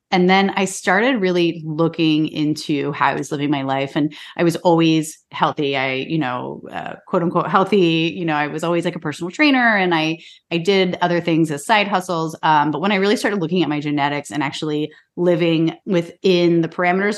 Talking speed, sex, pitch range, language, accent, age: 205 wpm, female, 155-190 Hz, English, American, 30-49